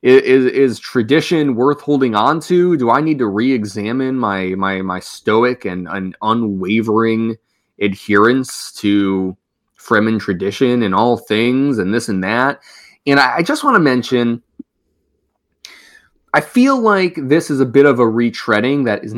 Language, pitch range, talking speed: English, 100-135 Hz, 155 wpm